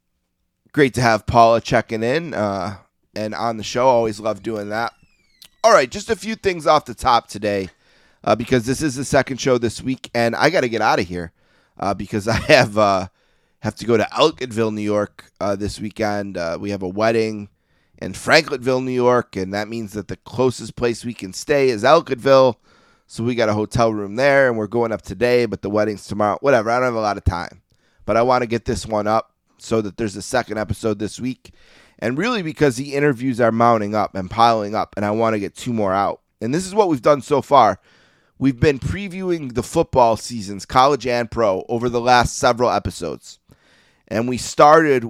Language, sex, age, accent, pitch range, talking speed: English, male, 30-49, American, 105-130 Hz, 215 wpm